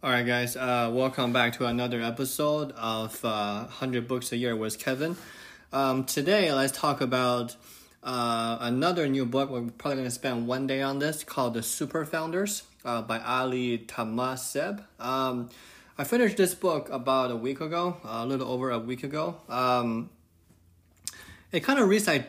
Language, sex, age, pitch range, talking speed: English, male, 20-39, 115-140 Hz, 170 wpm